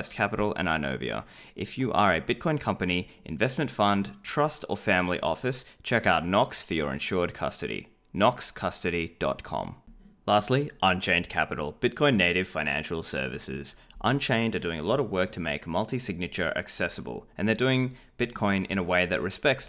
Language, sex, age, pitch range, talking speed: English, male, 20-39, 85-110 Hz, 150 wpm